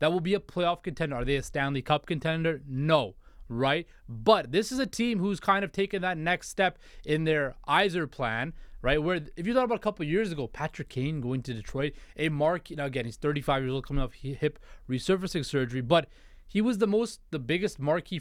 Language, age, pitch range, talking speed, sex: English, 20-39, 135-175 Hz, 215 wpm, male